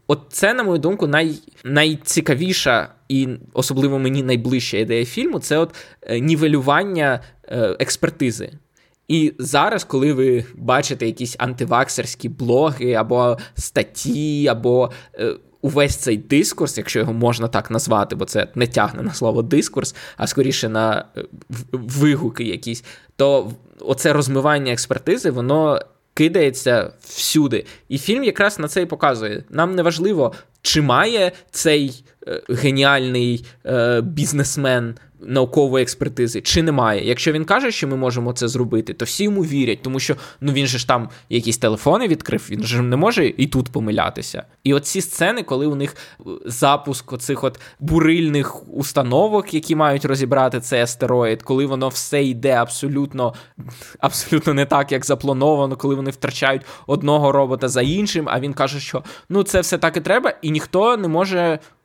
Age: 20-39